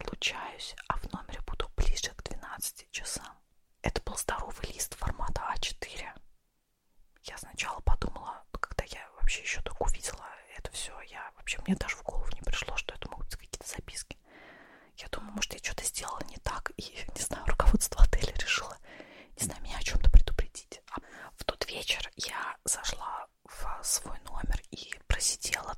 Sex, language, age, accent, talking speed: female, Russian, 20-39, native, 165 wpm